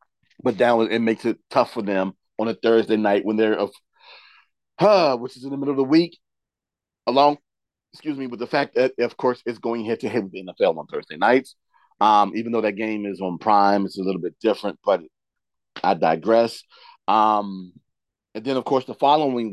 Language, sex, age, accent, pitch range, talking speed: English, male, 40-59, American, 110-150 Hz, 205 wpm